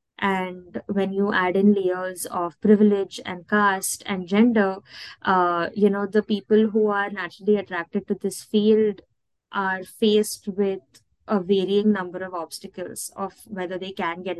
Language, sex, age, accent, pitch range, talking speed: English, female, 20-39, Indian, 180-205 Hz, 155 wpm